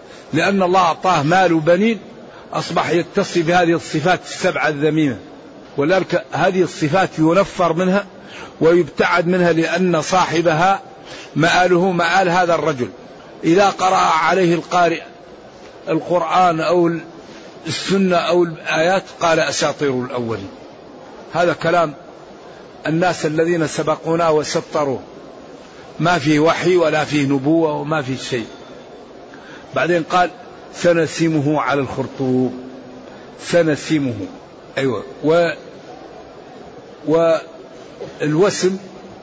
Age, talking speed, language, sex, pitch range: 50-69, 90 wpm, Arabic, male, 155-185 Hz